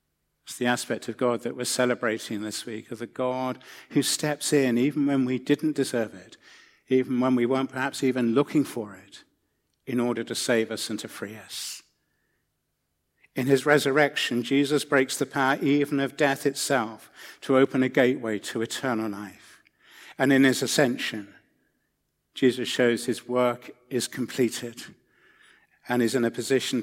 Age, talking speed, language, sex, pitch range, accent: 50-69, 165 wpm, English, male, 115-135 Hz, British